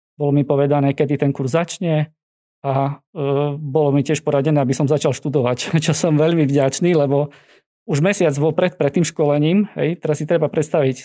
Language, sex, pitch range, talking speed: Slovak, male, 145-165 Hz, 180 wpm